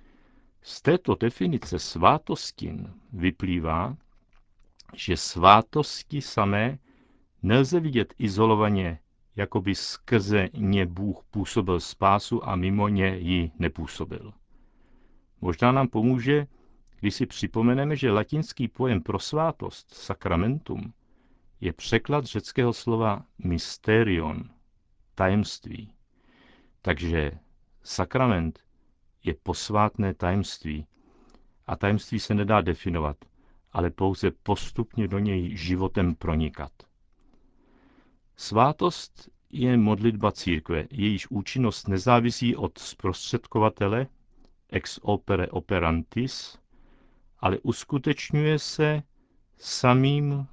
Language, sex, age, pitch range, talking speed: Czech, male, 60-79, 90-120 Hz, 90 wpm